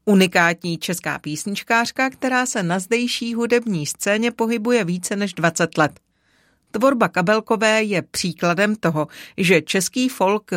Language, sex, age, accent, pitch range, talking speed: Czech, female, 40-59, native, 165-215 Hz, 125 wpm